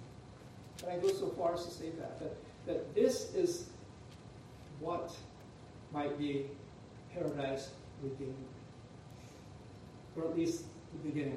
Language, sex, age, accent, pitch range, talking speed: English, male, 60-79, American, 125-165 Hz, 120 wpm